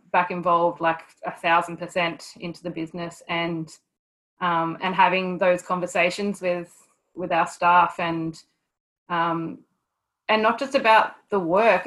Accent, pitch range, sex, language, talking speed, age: Australian, 165-180 Hz, female, English, 130 wpm, 20-39